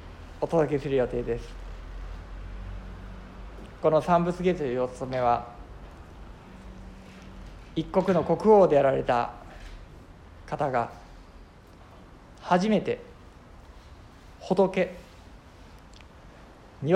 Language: Japanese